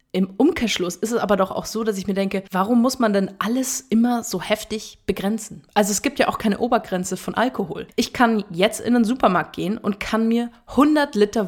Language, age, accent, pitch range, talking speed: German, 20-39, German, 185-235 Hz, 220 wpm